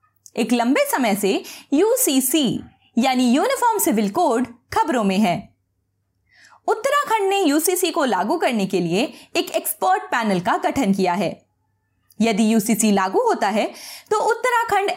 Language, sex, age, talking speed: Hindi, female, 20-39, 130 wpm